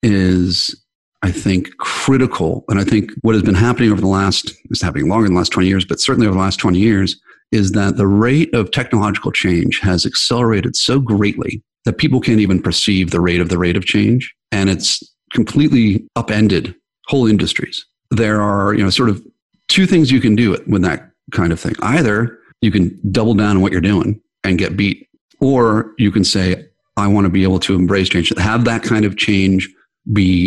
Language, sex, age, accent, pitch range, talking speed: English, male, 40-59, American, 90-110 Hz, 205 wpm